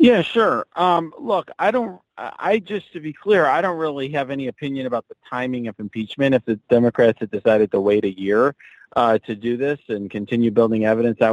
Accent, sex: American, male